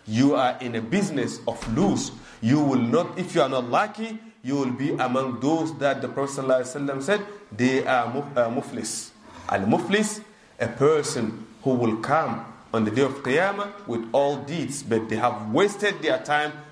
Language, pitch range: English, 130-190 Hz